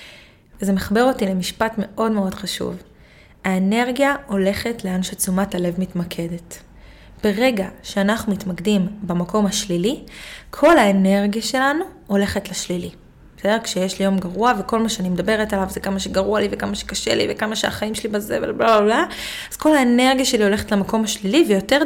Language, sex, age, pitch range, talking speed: Hebrew, female, 20-39, 185-235 Hz, 150 wpm